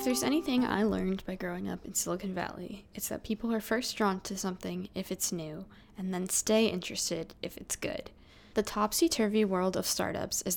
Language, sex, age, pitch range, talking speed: English, female, 10-29, 175-220 Hz, 200 wpm